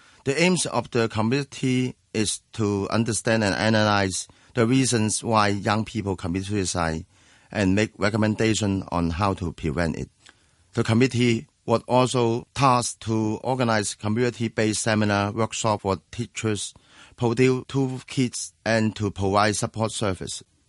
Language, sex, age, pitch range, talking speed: English, male, 30-49, 95-120 Hz, 130 wpm